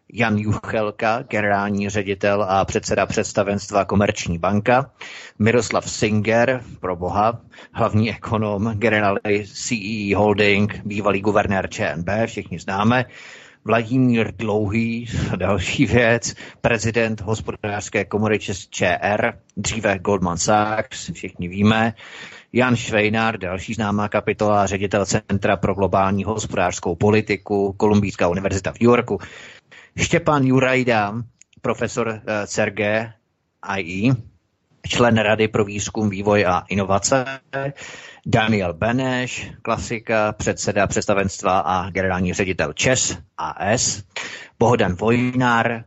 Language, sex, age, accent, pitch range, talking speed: Czech, male, 30-49, native, 100-115 Hz, 100 wpm